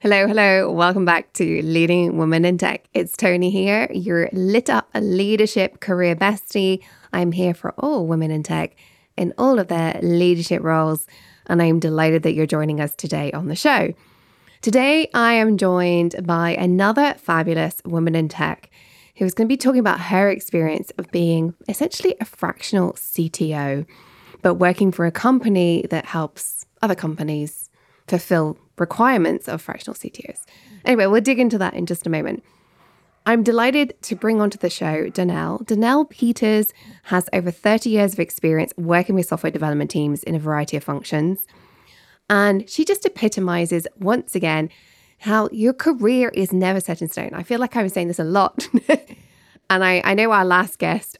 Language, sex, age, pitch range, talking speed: English, female, 20-39, 165-215 Hz, 170 wpm